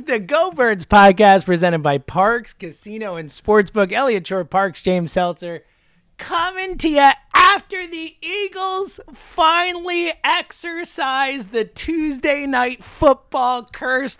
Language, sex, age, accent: English, male, 30-49, American